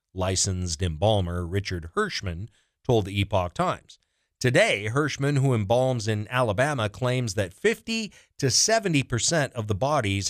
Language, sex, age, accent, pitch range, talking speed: English, male, 40-59, American, 110-165 Hz, 135 wpm